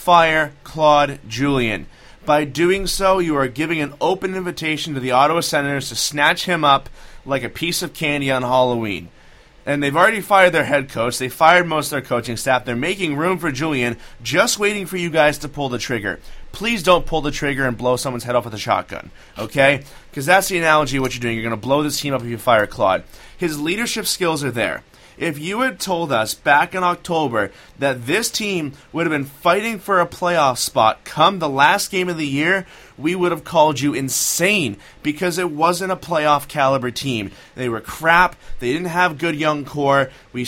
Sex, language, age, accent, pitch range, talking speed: male, English, 30-49, American, 130-175 Hz, 210 wpm